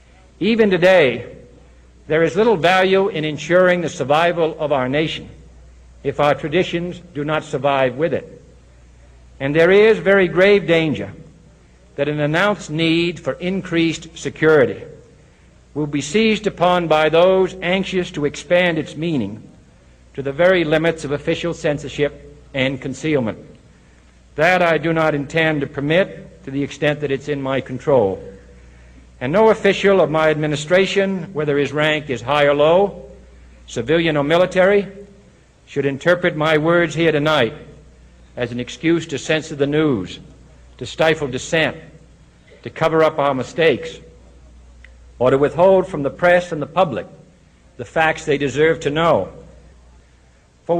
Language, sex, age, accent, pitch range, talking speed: English, male, 60-79, American, 130-175 Hz, 145 wpm